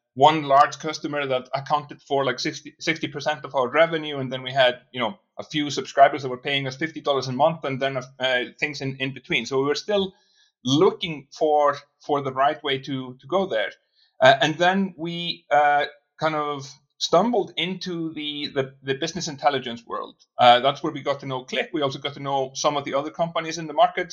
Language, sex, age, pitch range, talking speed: English, male, 30-49, 135-165 Hz, 215 wpm